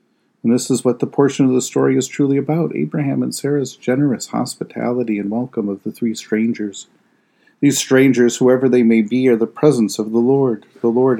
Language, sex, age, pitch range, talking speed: English, male, 40-59, 100-125 Hz, 200 wpm